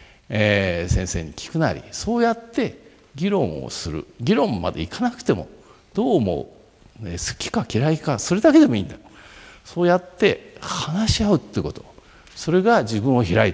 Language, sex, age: Japanese, male, 50-69